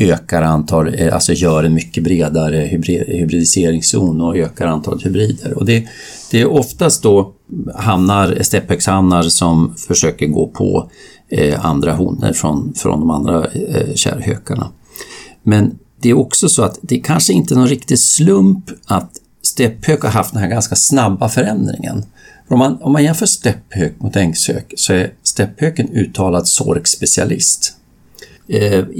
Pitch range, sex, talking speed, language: 90-120 Hz, male, 145 wpm, Swedish